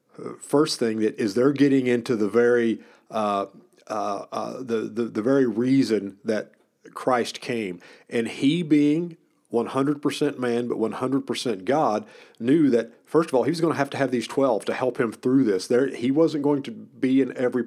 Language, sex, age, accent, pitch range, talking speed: English, male, 50-69, American, 110-135 Hz, 200 wpm